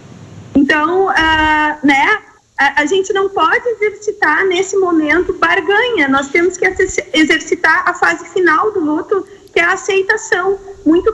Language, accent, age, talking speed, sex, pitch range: Portuguese, Brazilian, 30-49, 140 wpm, female, 305-385 Hz